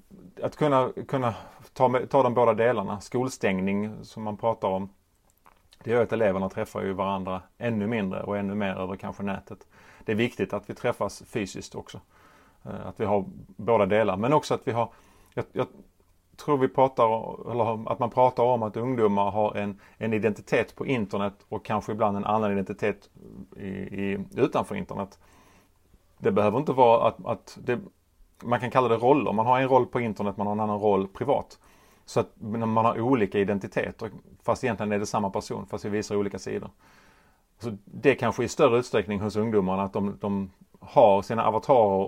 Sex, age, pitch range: male, 30-49, 100-115 Hz